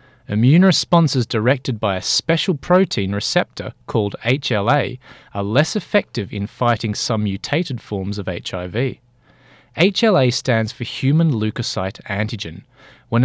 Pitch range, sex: 110-145 Hz, male